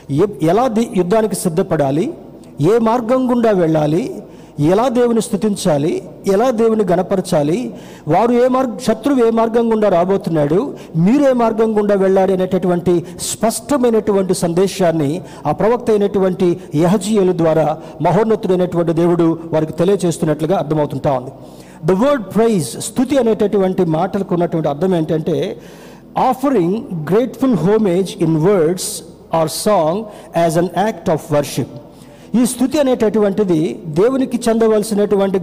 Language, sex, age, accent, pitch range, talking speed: Telugu, male, 50-69, native, 165-225 Hz, 105 wpm